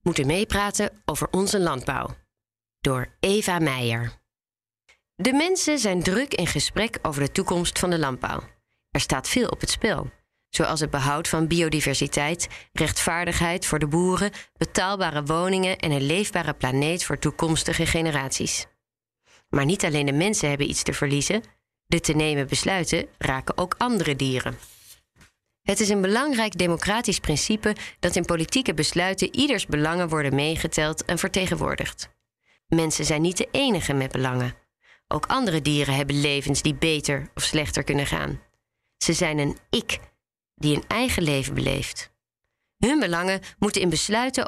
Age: 30-49